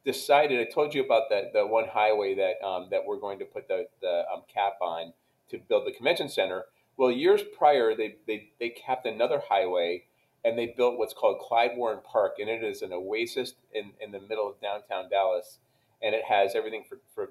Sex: male